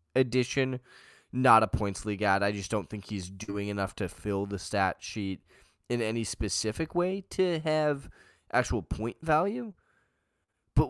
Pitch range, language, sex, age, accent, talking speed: 95-130 Hz, English, male, 10-29, American, 155 wpm